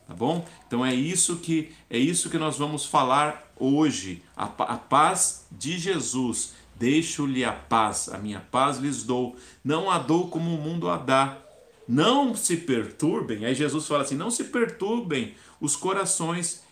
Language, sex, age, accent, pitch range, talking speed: Portuguese, male, 50-69, Brazilian, 120-165 Hz, 165 wpm